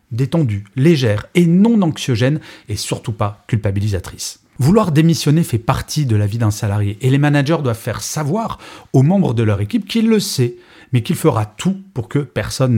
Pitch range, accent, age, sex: 110-160 Hz, French, 40-59, male